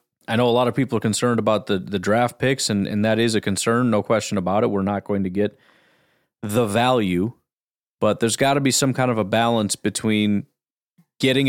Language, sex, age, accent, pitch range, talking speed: English, male, 30-49, American, 105-130 Hz, 220 wpm